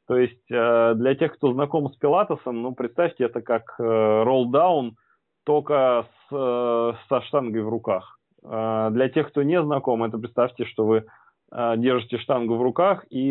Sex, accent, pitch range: male, native, 110-130 Hz